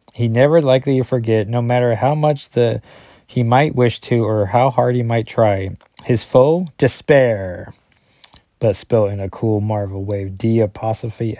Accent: American